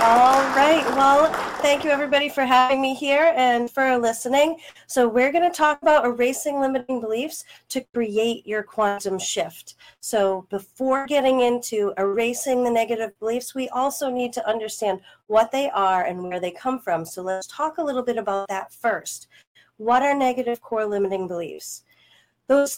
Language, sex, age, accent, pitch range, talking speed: English, female, 30-49, American, 200-260 Hz, 170 wpm